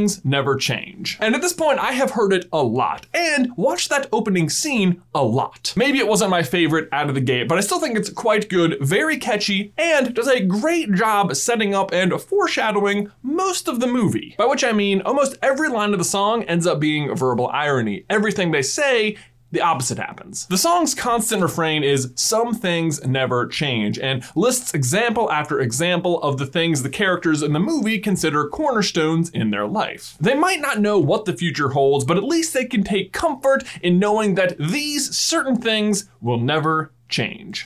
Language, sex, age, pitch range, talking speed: English, male, 20-39, 150-220 Hz, 195 wpm